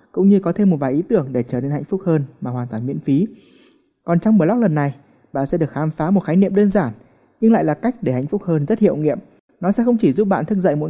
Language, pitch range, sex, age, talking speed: Vietnamese, 130-185 Hz, male, 20-39, 295 wpm